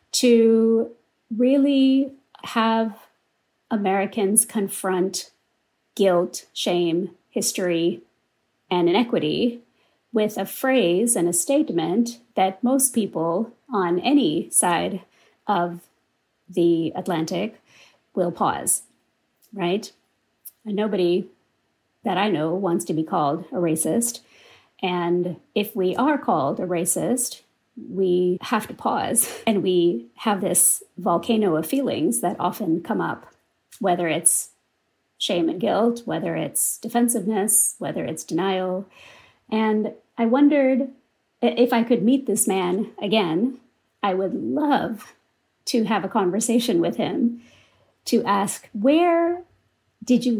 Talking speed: 115 wpm